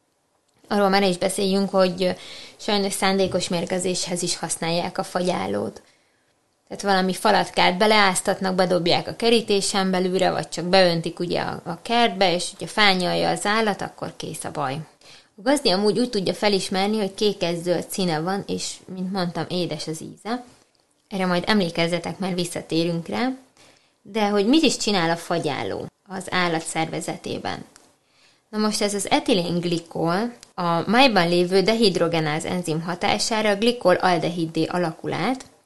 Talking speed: 140 wpm